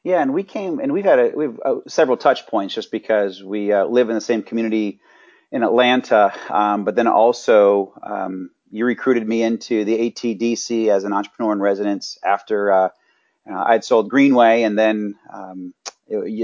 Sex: male